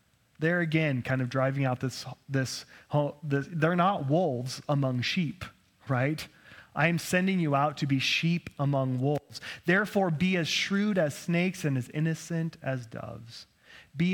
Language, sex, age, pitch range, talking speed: English, male, 30-49, 130-175 Hz, 155 wpm